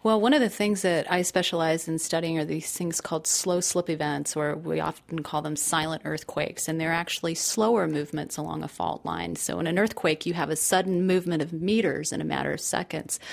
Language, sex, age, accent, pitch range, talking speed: English, female, 30-49, American, 155-180 Hz, 220 wpm